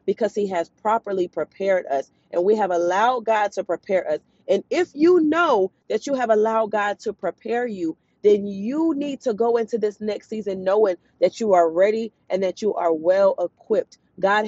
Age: 30-49